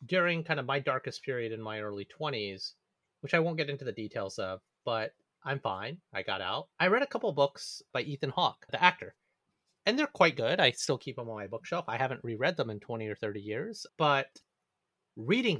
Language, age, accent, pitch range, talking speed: English, 30-49, American, 115-160 Hz, 215 wpm